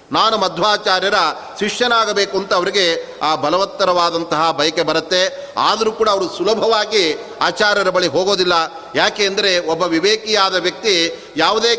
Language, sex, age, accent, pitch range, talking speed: Kannada, male, 40-59, native, 175-205 Hz, 105 wpm